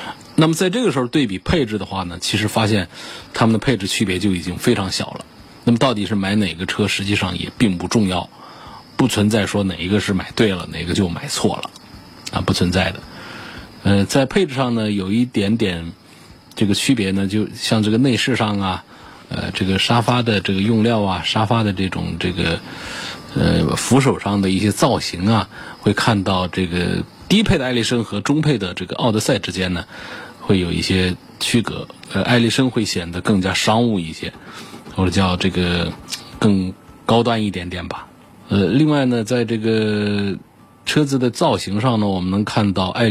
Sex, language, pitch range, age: male, Chinese, 95-115 Hz, 20-39